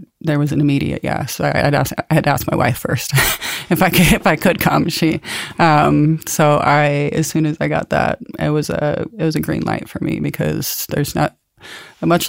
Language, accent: Ukrainian, American